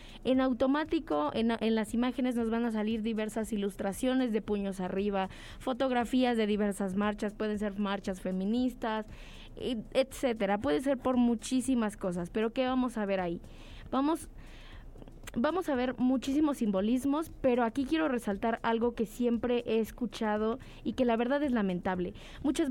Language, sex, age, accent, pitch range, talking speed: English, female, 20-39, Mexican, 210-255 Hz, 150 wpm